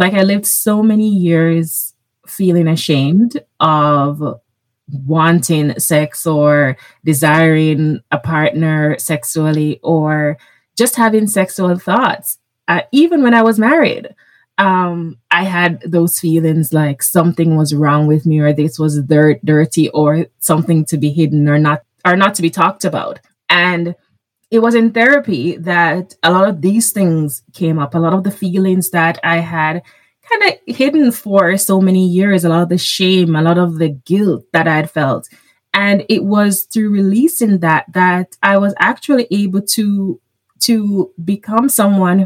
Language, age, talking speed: English, 20-39, 160 wpm